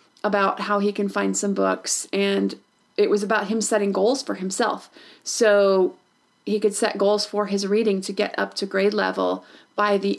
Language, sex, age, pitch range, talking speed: English, female, 30-49, 200-240 Hz, 190 wpm